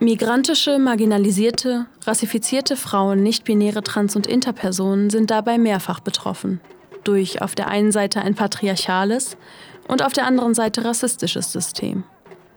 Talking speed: 125 wpm